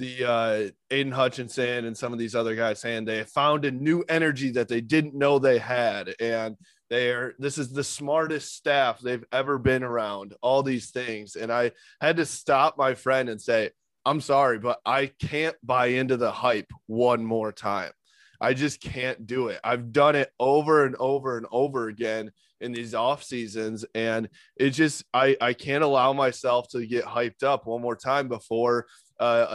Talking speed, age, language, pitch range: 190 wpm, 20-39, English, 115-140 Hz